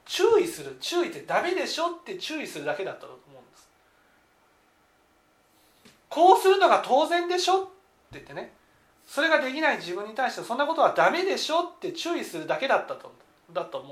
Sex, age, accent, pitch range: male, 40-59, native, 235-390 Hz